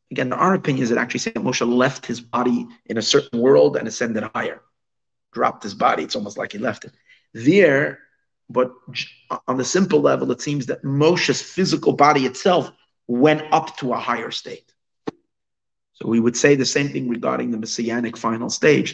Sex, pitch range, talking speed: male, 120-145 Hz, 185 wpm